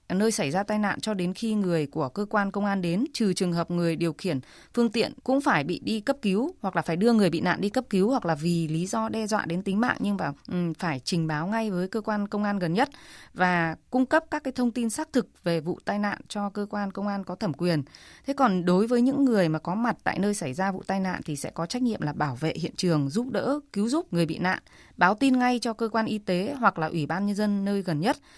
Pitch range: 170-225 Hz